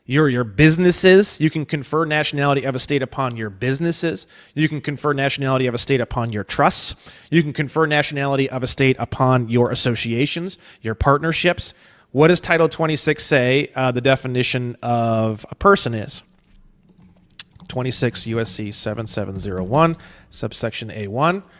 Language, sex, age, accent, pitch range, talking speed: English, male, 30-49, American, 130-165 Hz, 135 wpm